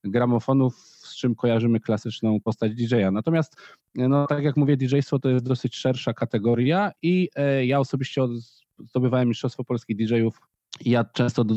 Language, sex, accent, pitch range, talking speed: Polish, male, native, 110-135 Hz, 135 wpm